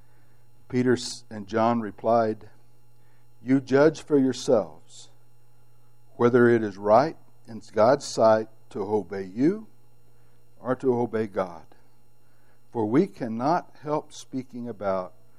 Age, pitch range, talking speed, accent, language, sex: 60-79, 105-120 Hz, 110 wpm, American, English, male